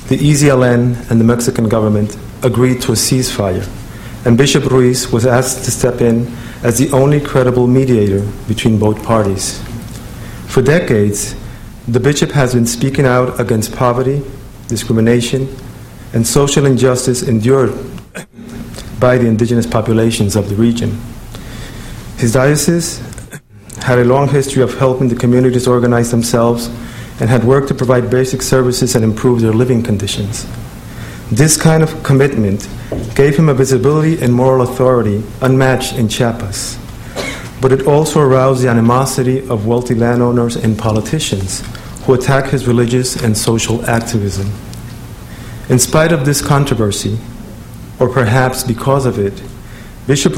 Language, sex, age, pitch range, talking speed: English, male, 50-69, 115-130 Hz, 135 wpm